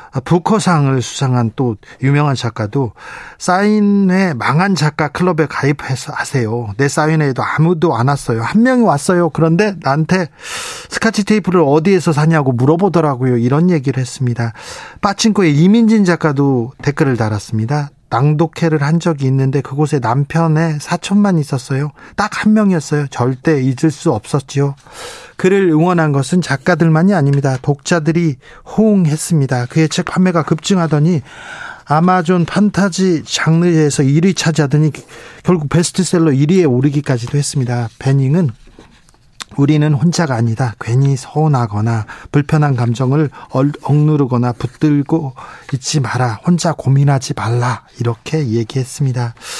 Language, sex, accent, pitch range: Korean, male, native, 130-175 Hz